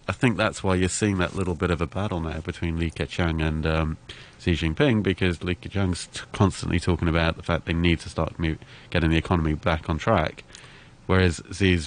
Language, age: English, 30-49